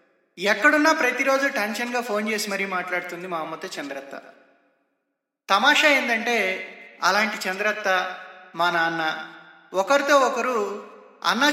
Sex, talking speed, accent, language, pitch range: male, 100 wpm, native, Telugu, 190-265 Hz